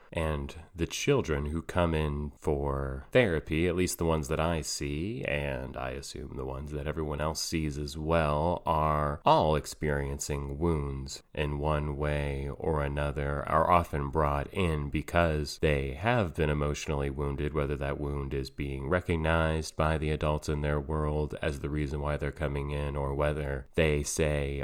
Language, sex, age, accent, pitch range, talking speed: English, male, 30-49, American, 70-85 Hz, 165 wpm